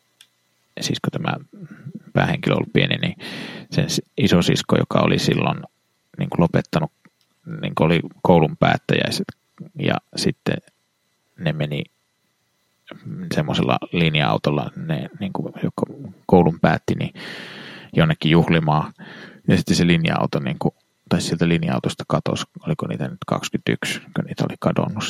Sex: male